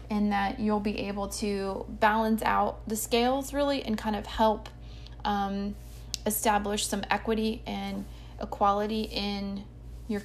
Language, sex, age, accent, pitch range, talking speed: English, female, 20-39, American, 205-240 Hz, 135 wpm